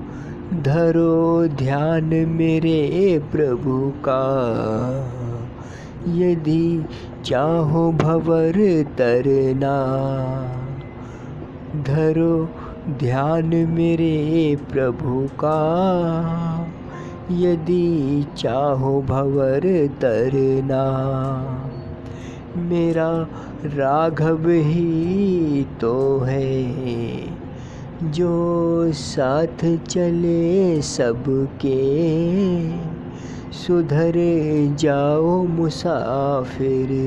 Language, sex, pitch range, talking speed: Hindi, male, 130-165 Hz, 50 wpm